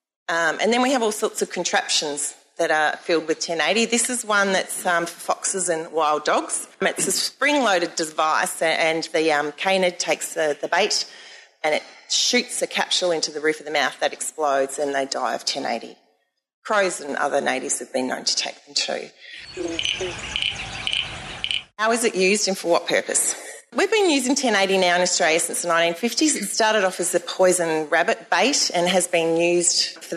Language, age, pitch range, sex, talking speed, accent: English, 30-49, 160-200 Hz, female, 190 wpm, Australian